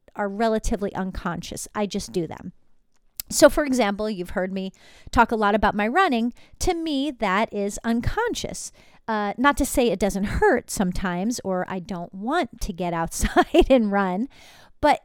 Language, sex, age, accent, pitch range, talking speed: English, female, 40-59, American, 185-255 Hz, 170 wpm